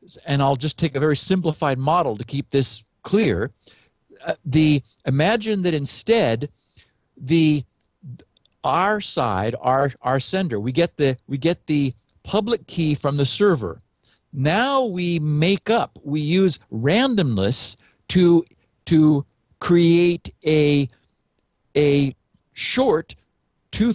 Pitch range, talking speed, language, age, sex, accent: 130-180 Hz, 125 wpm, English, 50-69, male, American